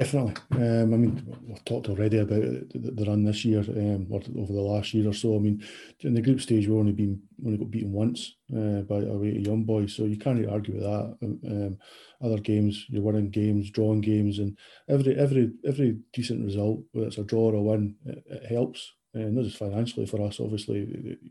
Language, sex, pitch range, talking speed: English, male, 105-115 Hz, 230 wpm